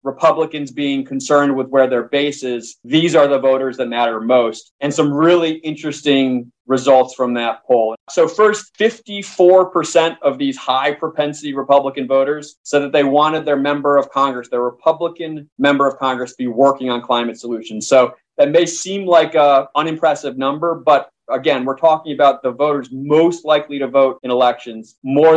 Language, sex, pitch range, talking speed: English, male, 130-155 Hz, 175 wpm